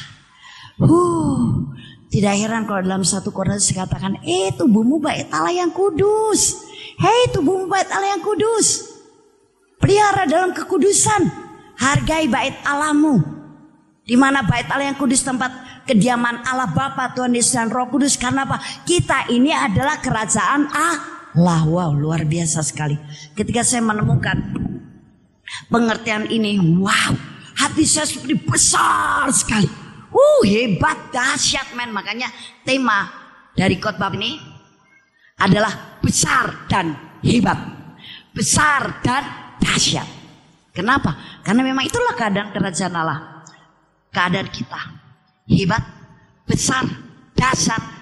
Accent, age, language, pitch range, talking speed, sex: native, 20-39, Indonesian, 185-305 Hz, 120 wpm, female